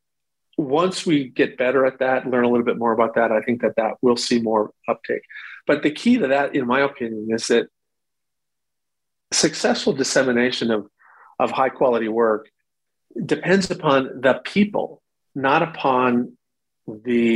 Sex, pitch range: male, 110-135 Hz